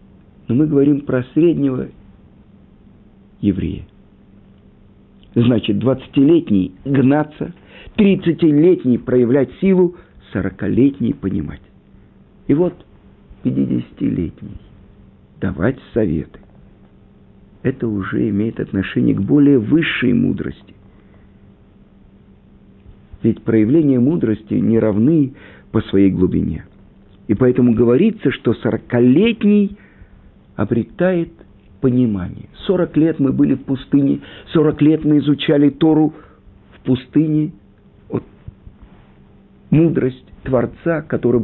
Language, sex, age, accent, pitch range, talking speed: Russian, male, 50-69, native, 100-150 Hz, 85 wpm